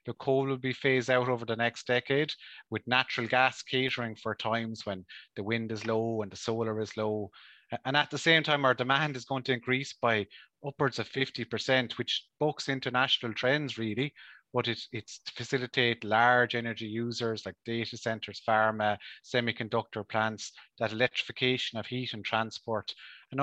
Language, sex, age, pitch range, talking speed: English, male, 30-49, 110-130 Hz, 170 wpm